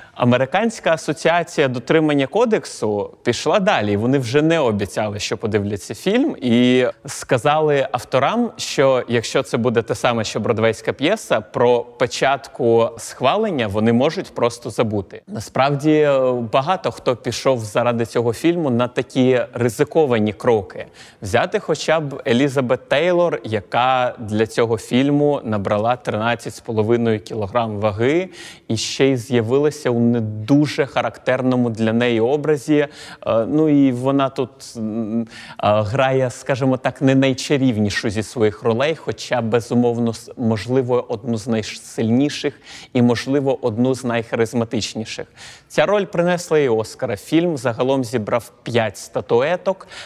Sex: male